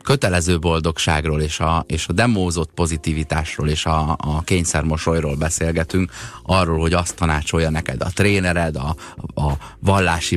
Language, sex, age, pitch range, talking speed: Hungarian, male, 30-49, 80-100 Hz, 135 wpm